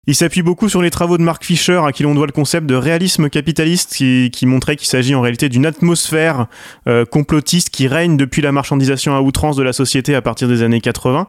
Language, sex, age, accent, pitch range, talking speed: French, male, 30-49, French, 125-155 Hz, 235 wpm